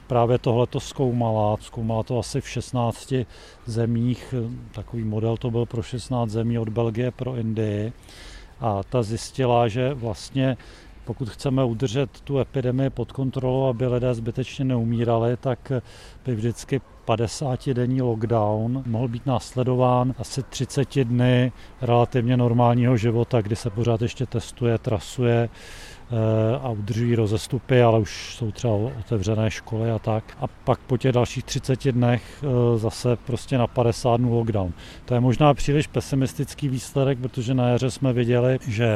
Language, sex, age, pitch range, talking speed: Czech, male, 40-59, 115-130 Hz, 145 wpm